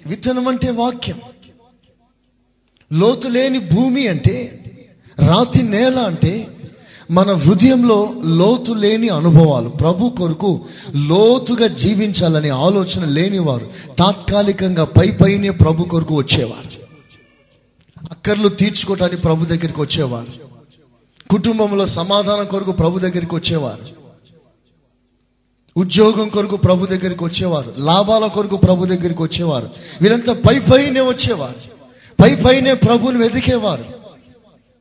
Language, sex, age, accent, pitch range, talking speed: Telugu, male, 30-49, native, 155-225 Hz, 90 wpm